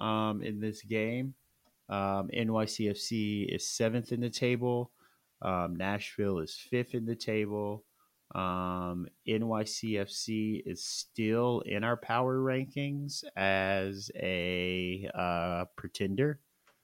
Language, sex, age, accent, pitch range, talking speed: English, male, 30-49, American, 90-110 Hz, 105 wpm